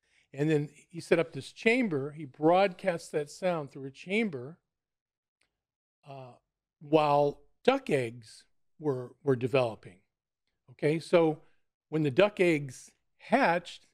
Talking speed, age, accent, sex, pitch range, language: 120 wpm, 40-59, American, male, 135-165 Hz, English